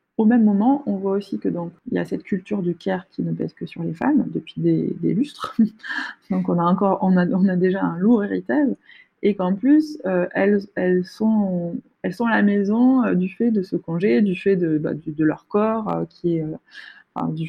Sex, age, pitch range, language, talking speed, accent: female, 20-39, 170-225 Hz, French, 215 wpm, French